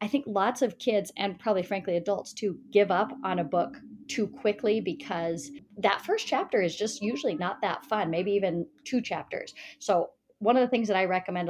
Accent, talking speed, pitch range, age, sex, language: American, 205 wpm, 180-230 Hz, 30-49, female, English